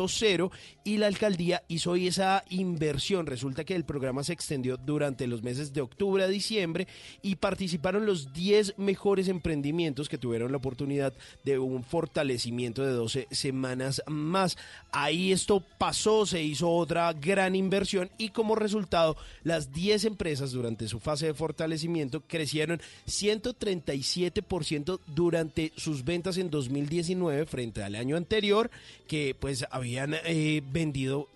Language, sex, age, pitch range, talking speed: Spanish, male, 30-49, 135-185 Hz, 140 wpm